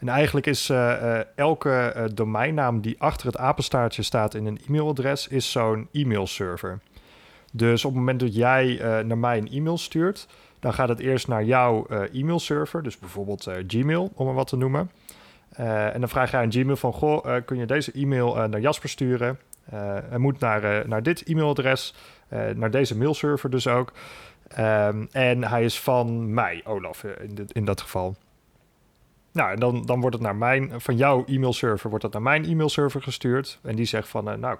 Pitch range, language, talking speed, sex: 110-140 Hz, Dutch, 195 wpm, male